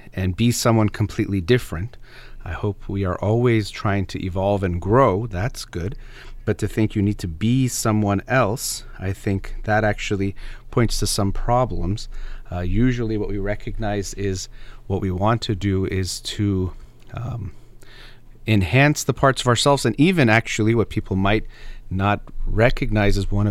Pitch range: 100-120 Hz